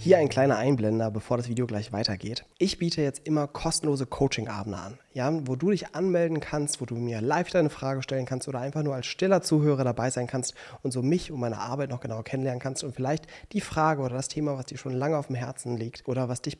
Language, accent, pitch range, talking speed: German, German, 110-145 Hz, 240 wpm